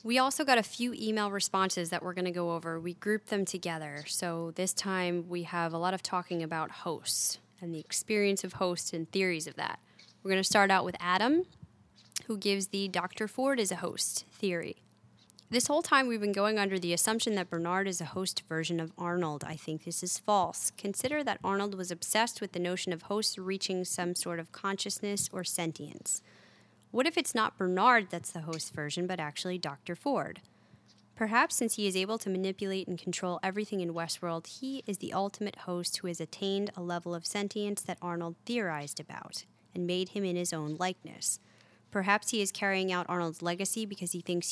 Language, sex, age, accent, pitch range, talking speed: English, female, 10-29, American, 170-205 Hz, 200 wpm